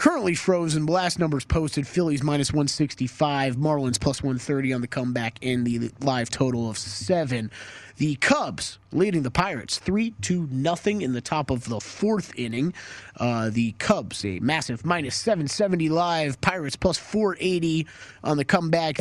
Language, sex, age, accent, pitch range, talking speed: English, male, 30-49, American, 125-165 Hz, 150 wpm